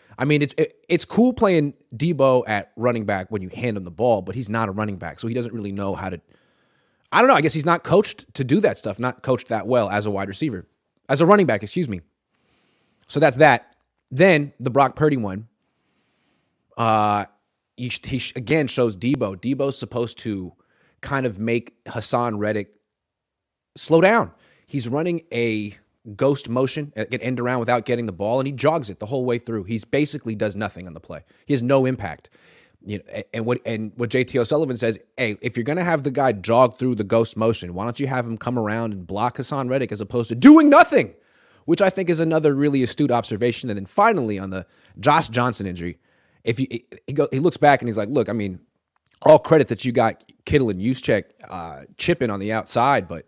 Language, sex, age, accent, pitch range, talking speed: English, male, 30-49, American, 105-140 Hz, 215 wpm